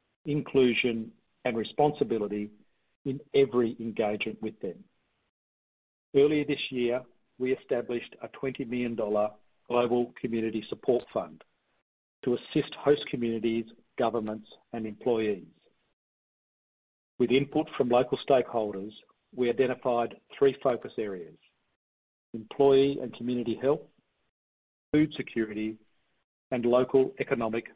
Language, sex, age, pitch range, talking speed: English, male, 50-69, 110-135 Hz, 100 wpm